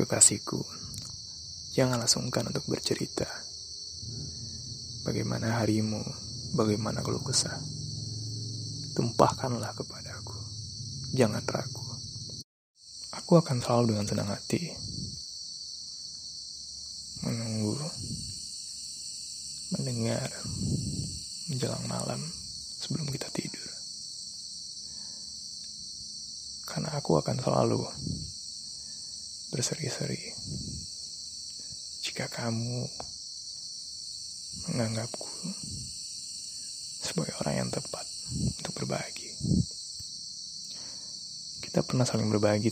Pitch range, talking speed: 80-120 Hz, 60 wpm